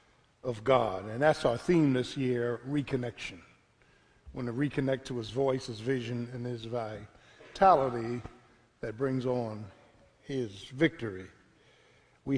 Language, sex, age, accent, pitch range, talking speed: English, male, 50-69, American, 115-140 Hz, 130 wpm